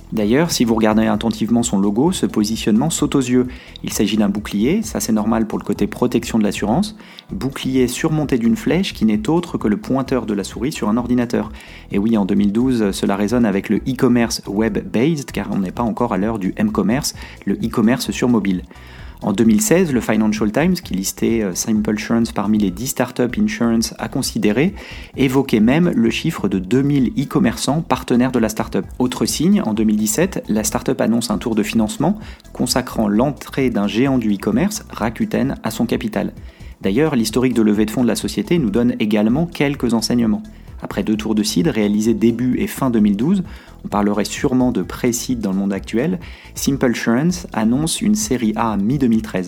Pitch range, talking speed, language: 105-130 Hz, 185 wpm, French